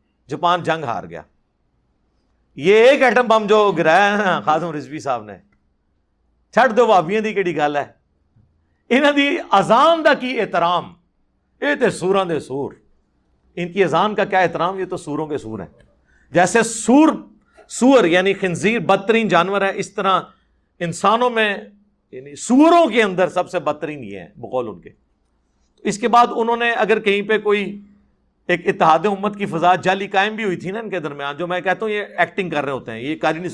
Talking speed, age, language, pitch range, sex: 185 wpm, 50-69, Urdu, 140-205 Hz, male